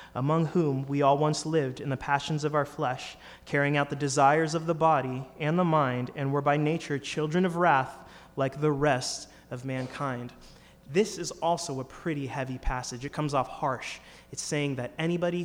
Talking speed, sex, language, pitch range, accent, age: 190 wpm, male, English, 125-155 Hz, American, 30-49